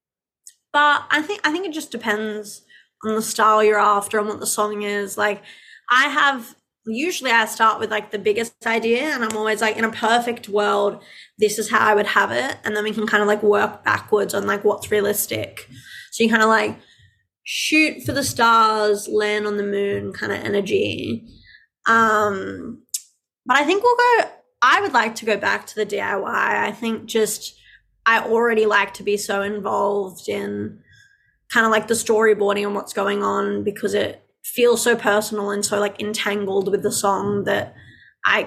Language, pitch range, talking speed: English, 205-225 Hz, 195 wpm